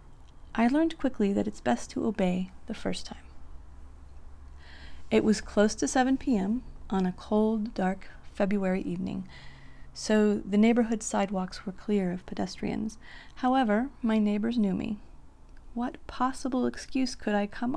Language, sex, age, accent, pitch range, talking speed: English, female, 30-49, American, 180-230 Hz, 140 wpm